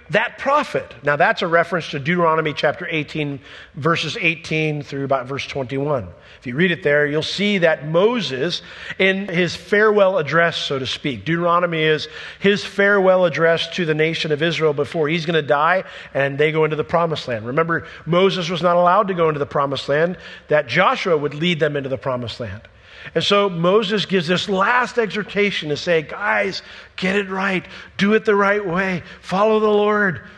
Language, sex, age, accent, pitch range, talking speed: English, male, 50-69, American, 140-195 Hz, 190 wpm